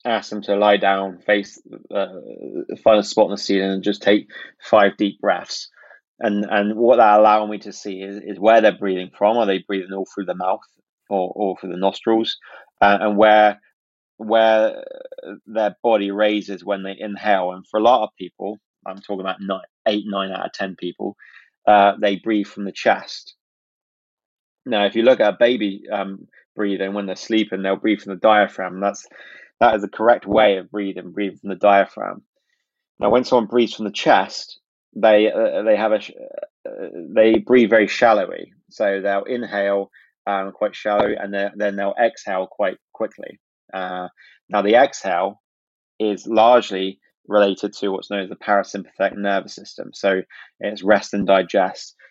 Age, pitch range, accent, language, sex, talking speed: 20-39, 95-105 Hz, British, English, male, 180 wpm